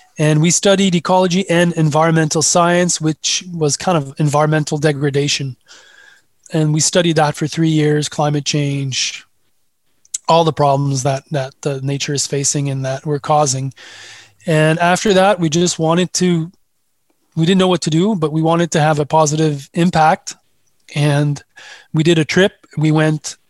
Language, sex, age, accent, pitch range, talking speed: English, male, 20-39, Canadian, 150-170 Hz, 160 wpm